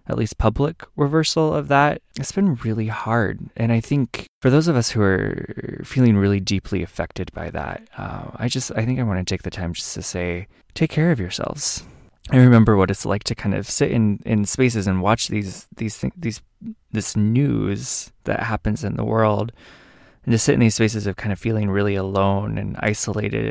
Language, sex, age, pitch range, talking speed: English, male, 20-39, 100-120 Hz, 205 wpm